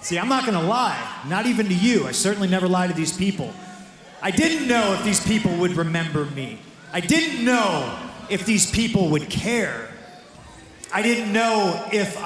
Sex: male